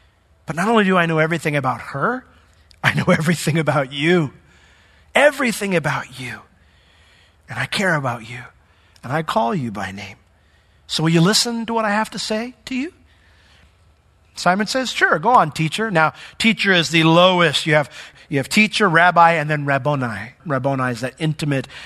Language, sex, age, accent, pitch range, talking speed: English, male, 40-59, American, 125-185 Hz, 175 wpm